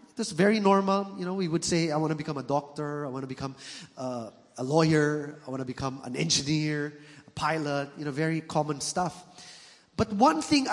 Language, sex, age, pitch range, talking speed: English, male, 20-39, 155-240 Hz, 205 wpm